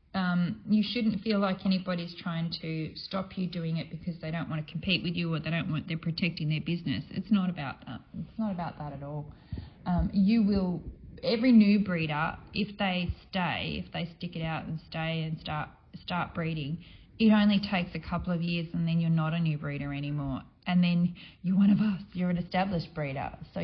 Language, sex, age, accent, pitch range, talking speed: English, female, 20-39, Australian, 170-205 Hz, 215 wpm